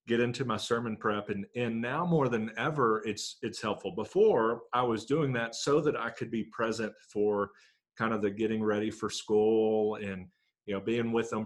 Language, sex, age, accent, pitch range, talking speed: English, male, 40-59, American, 105-125 Hz, 205 wpm